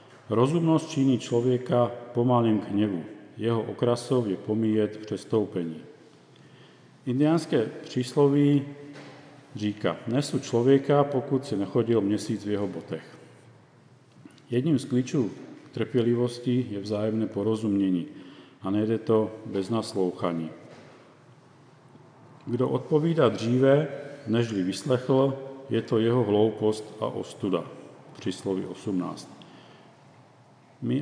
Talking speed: 100 wpm